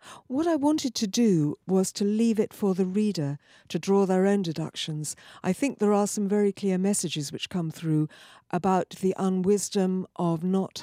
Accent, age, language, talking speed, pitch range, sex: British, 50-69, English, 185 wpm, 180-225 Hz, female